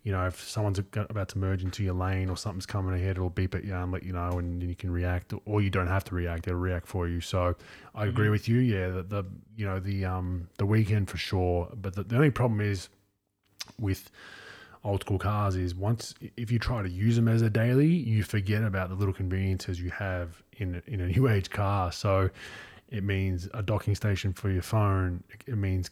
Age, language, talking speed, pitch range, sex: 20-39, English, 230 wpm, 95-105 Hz, male